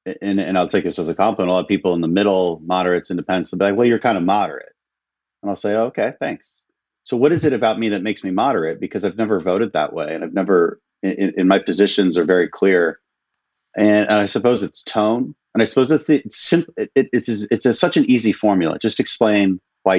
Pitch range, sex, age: 95-130 Hz, male, 30-49